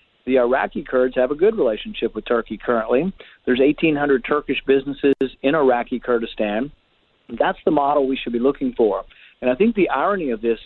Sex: male